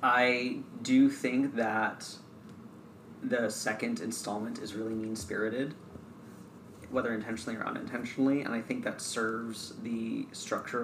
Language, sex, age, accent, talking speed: English, male, 30-49, American, 120 wpm